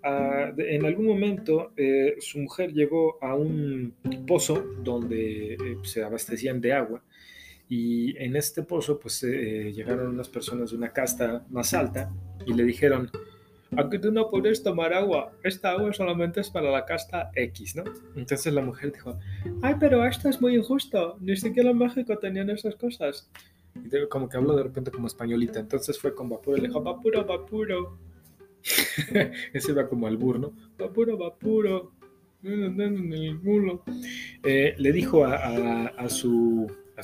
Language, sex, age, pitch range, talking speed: Spanish, male, 20-39, 125-195 Hz, 165 wpm